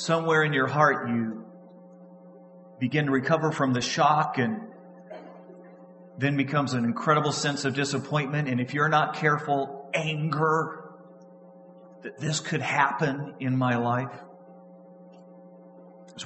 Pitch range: 125-195 Hz